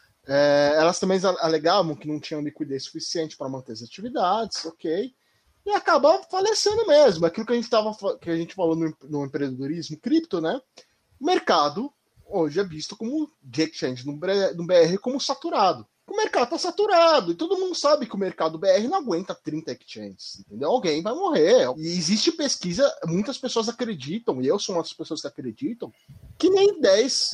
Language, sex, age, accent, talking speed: Portuguese, male, 20-39, Brazilian, 180 wpm